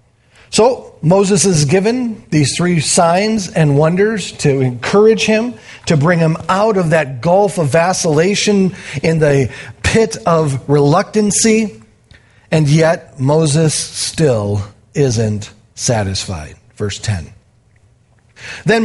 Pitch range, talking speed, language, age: 115-195 Hz, 110 wpm, English, 40-59